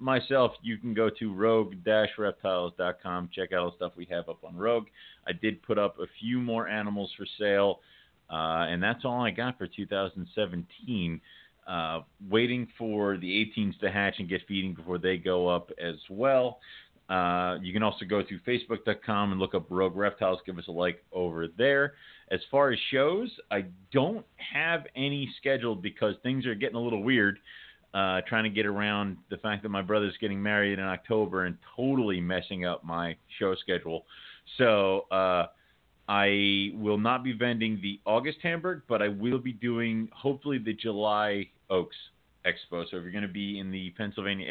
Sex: male